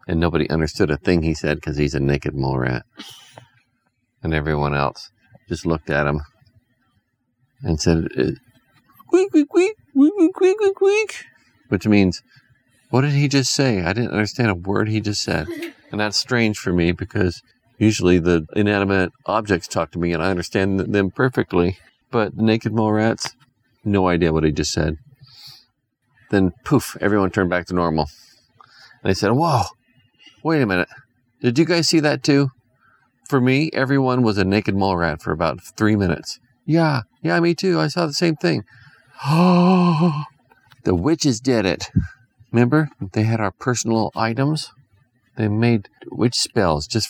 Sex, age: male, 40-59